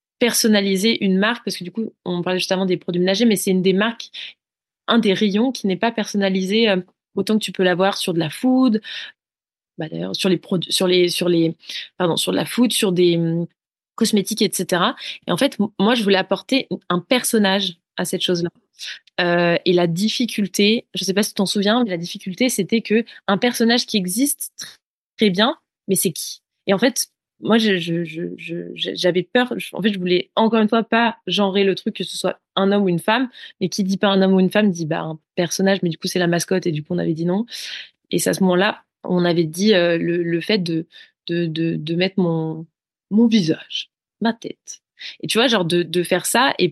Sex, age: female, 20-39